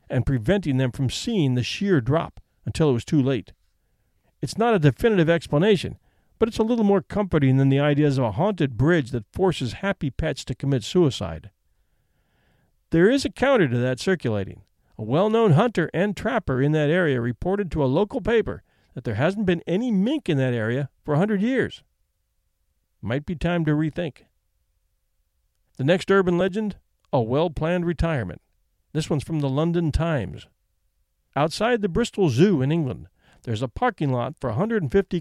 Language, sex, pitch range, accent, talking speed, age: English, male, 125-190 Hz, American, 170 wpm, 50-69